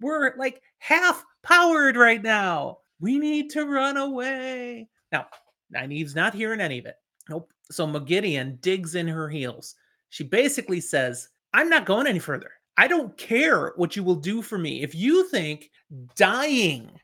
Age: 30-49